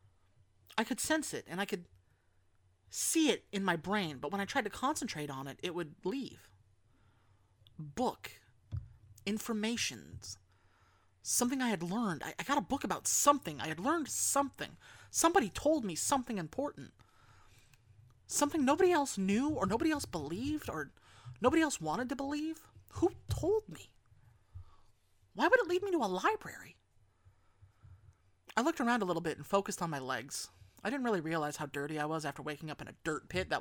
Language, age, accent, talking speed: English, 30-49, American, 175 wpm